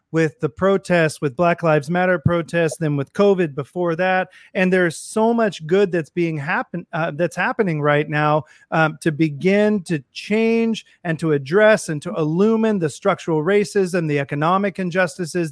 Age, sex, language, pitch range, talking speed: 30-49, male, English, 160-205 Hz, 165 wpm